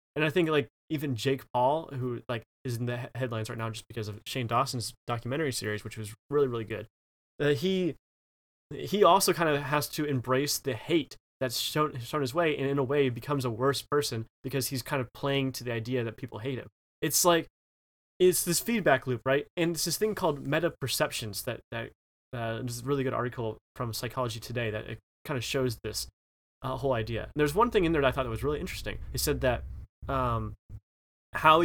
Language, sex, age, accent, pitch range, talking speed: English, male, 20-39, American, 115-145 Hz, 220 wpm